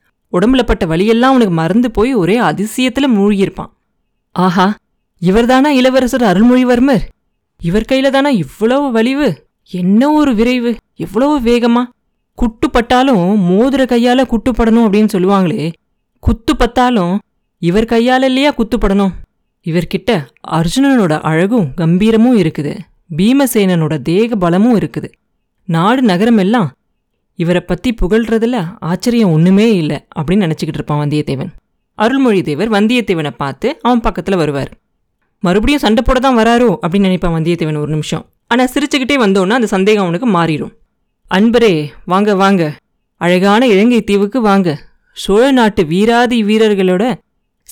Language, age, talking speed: Tamil, 20-39, 110 wpm